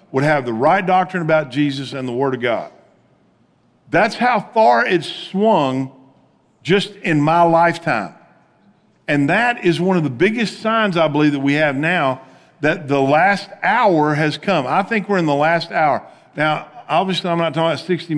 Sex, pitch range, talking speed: male, 150-205 Hz, 180 wpm